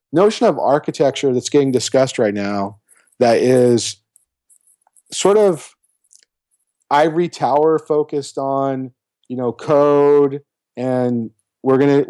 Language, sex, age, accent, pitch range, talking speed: English, male, 40-59, American, 120-145 Hz, 110 wpm